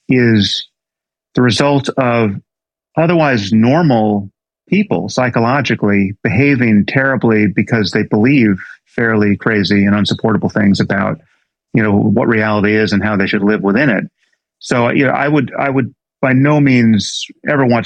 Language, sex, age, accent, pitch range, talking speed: English, male, 40-59, American, 105-130 Hz, 145 wpm